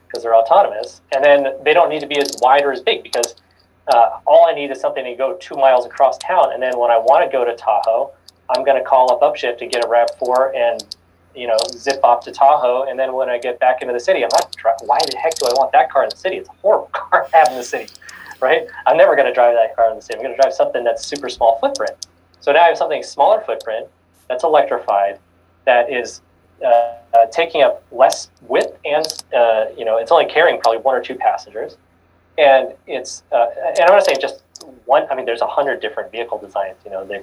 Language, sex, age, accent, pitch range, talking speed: English, male, 30-49, American, 110-140 Hz, 250 wpm